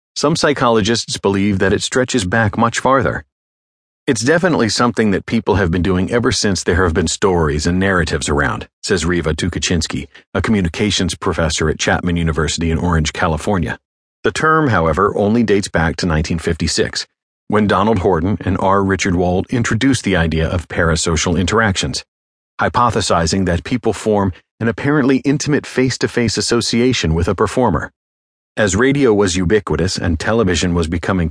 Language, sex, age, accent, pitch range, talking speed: English, male, 40-59, American, 85-115 Hz, 150 wpm